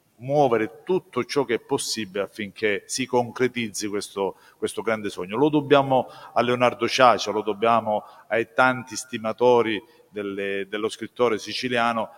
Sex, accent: male, native